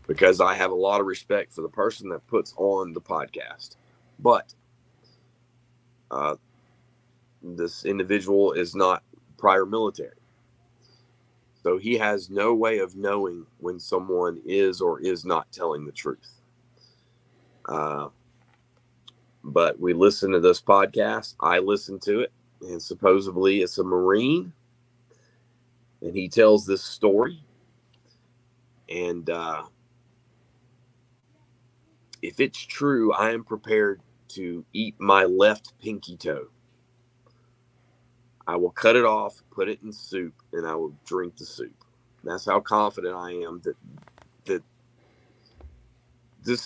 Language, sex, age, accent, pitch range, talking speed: English, male, 30-49, American, 105-125 Hz, 125 wpm